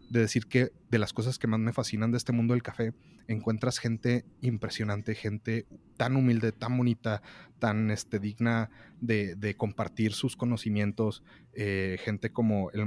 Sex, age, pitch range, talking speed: male, 30-49, 105-130 Hz, 160 wpm